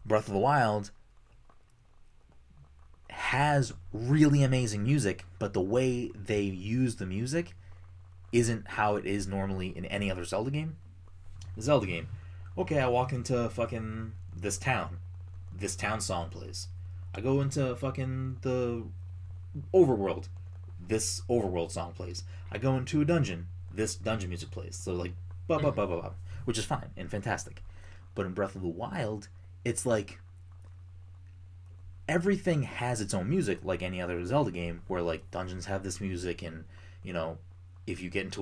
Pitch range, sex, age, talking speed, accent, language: 90-110 Hz, male, 30-49, 160 wpm, American, English